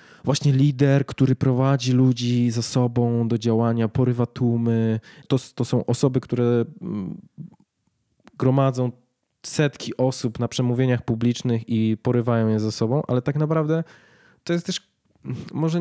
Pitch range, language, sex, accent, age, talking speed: 115-135 Hz, Polish, male, native, 20-39, 130 wpm